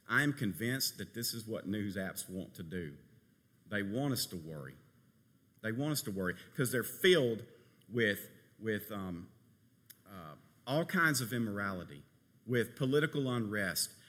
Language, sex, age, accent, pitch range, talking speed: English, male, 50-69, American, 100-125 Hz, 150 wpm